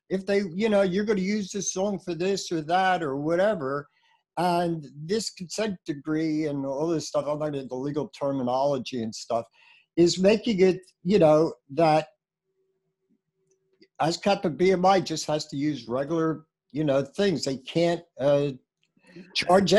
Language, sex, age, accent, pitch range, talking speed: English, male, 60-79, American, 145-200 Hz, 160 wpm